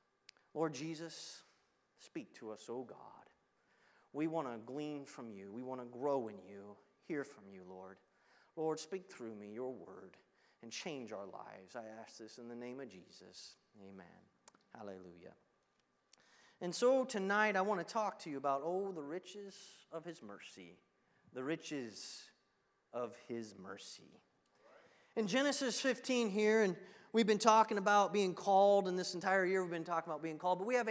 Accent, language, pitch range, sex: American, English, 155-230 Hz, male